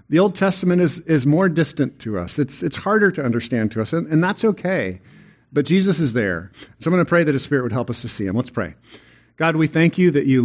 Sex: male